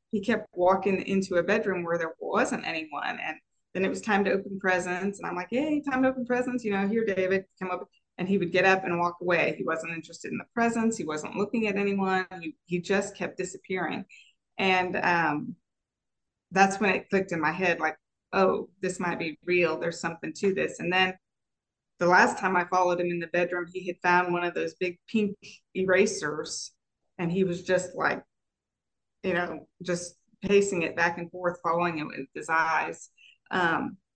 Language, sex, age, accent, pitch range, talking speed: English, female, 20-39, American, 175-195 Hz, 200 wpm